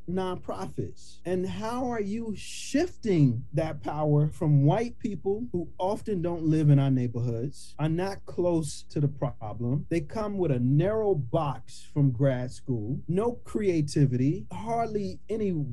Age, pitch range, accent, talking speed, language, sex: 30-49, 135-195 Hz, American, 140 wpm, English, male